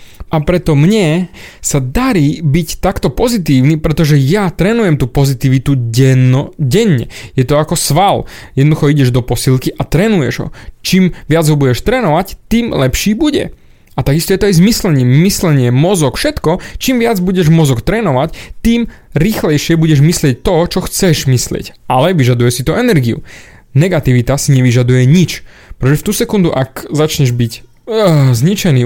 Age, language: 20-39, Slovak